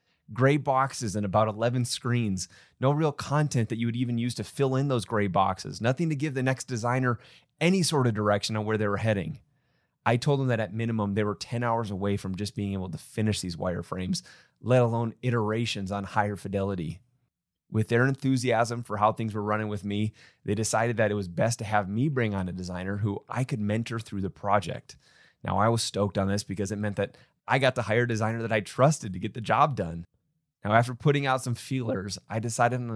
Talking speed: 225 wpm